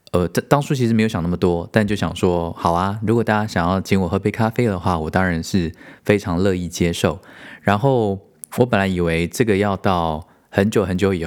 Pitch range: 85-105 Hz